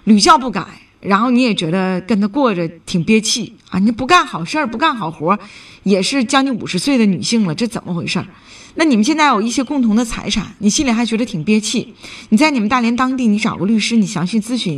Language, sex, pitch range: Chinese, female, 190-250 Hz